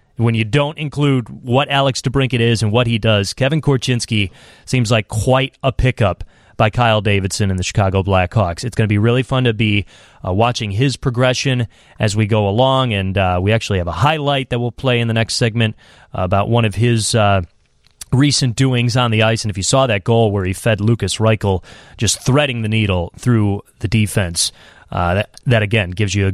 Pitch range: 105-140 Hz